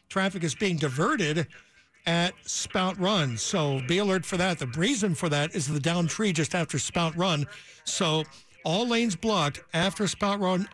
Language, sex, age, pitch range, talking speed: English, male, 60-79, 155-185 Hz, 175 wpm